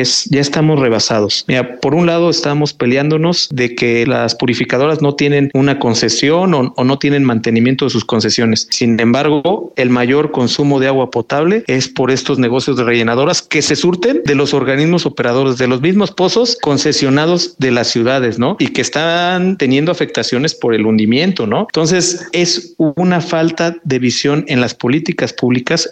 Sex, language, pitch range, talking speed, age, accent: male, Spanish, 120-150 Hz, 170 wpm, 50-69, Mexican